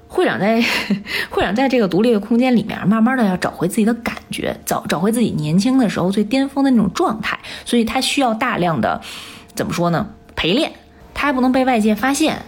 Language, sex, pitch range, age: Chinese, female, 195-255 Hz, 20-39